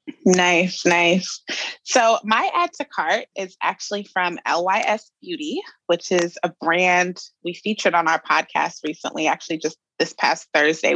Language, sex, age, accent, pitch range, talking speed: English, female, 20-39, American, 170-205 Hz, 150 wpm